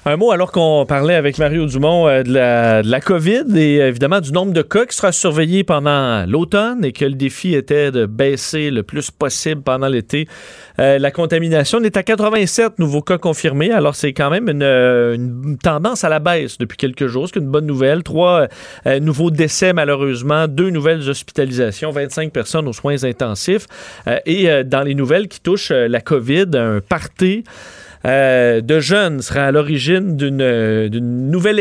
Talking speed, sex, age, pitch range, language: 190 wpm, male, 40-59, 130-170 Hz, French